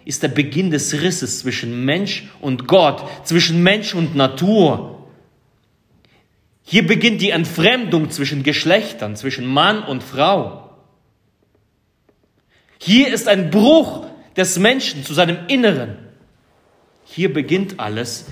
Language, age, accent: German, 30-49, German